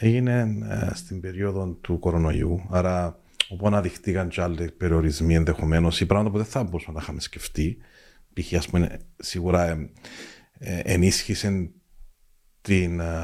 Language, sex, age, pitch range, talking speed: Greek, male, 40-59, 85-110 Hz, 110 wpm